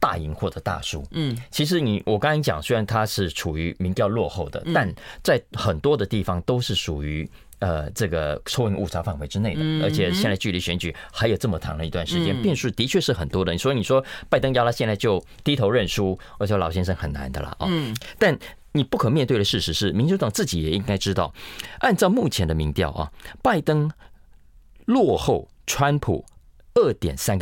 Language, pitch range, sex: Chinese, 85-130 Hz, male